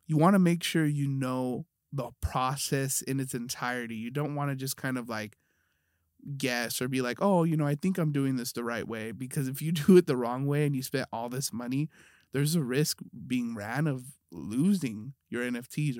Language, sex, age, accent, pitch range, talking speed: English, male, 20-39, American, 120-150 Hz, 220 wpm